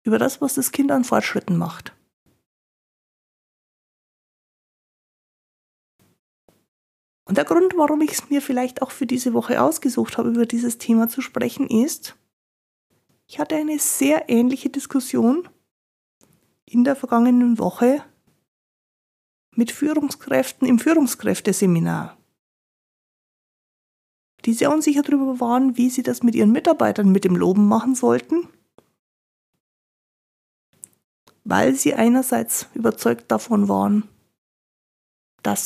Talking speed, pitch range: 110 wpm, 220-280 Hz